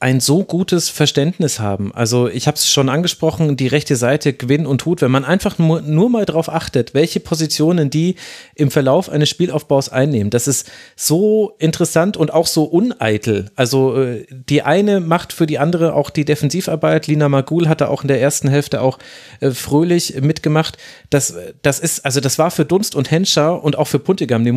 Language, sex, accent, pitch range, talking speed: German, male, German, 130-160 Hz, 190 wpm